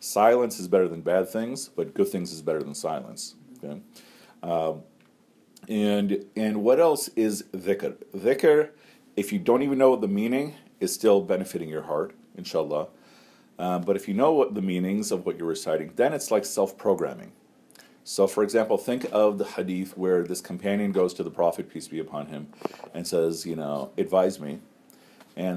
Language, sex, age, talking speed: English, male, 40-59, 180 wpm